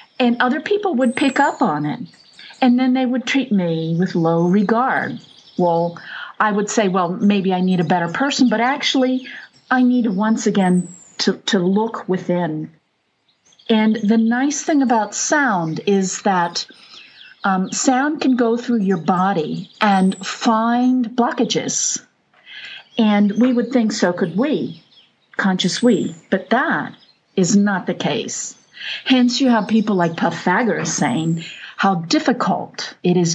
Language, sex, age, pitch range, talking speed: English, female, 50-69, 190-255 Hz, 150 wpm